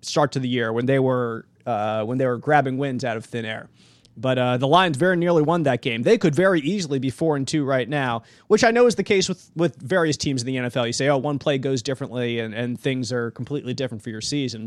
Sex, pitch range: male, 125-150 Hz